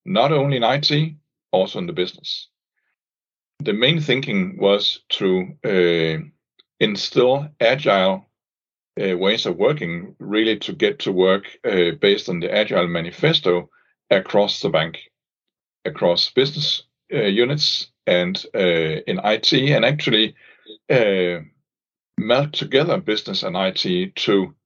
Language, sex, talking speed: English, male, 125 wpm